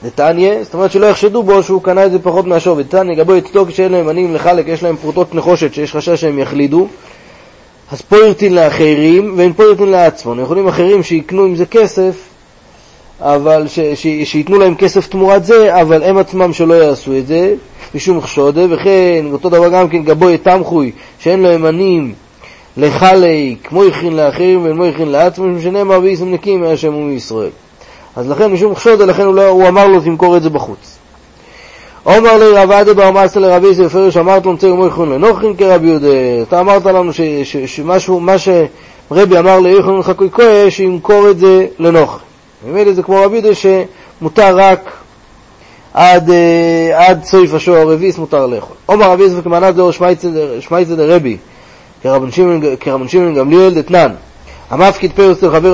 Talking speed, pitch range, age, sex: 160 wpm, 160-190 Hz, 30-49, male